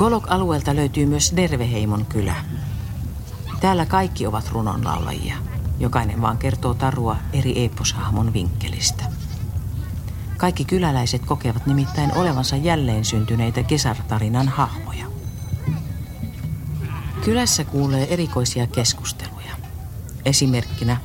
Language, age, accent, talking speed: Finnish, 50-69, native, 85 wpm